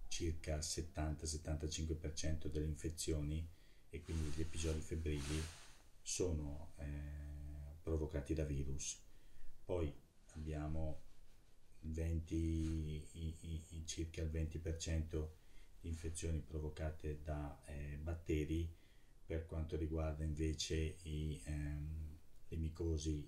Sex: male